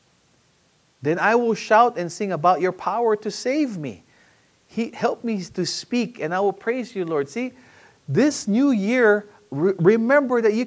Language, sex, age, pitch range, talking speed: English, male, 40-59, 145-220 Hz, 175 wpm